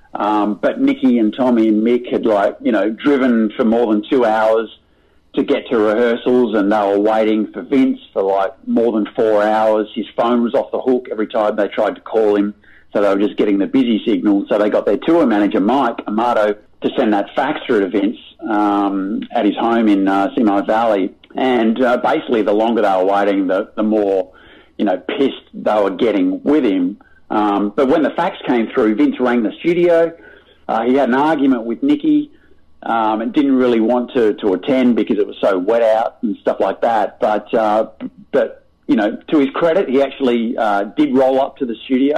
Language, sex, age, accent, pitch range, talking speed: English, male, 50-69, Australian, 105-135 Hz, 210 wpm